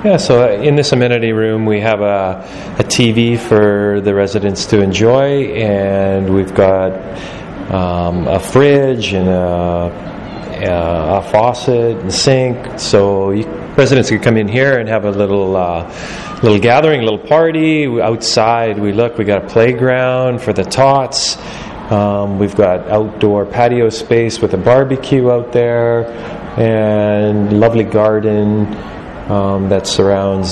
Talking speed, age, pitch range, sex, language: 145 wpm, 30-49, 95-115 Hz, male, English